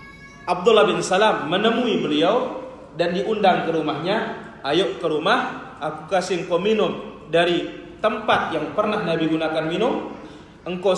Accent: native